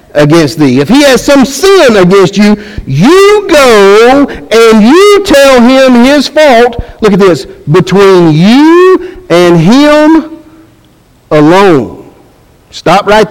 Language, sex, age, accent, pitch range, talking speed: English, male, 50-69, American, 160-270 Hz, 120 wpm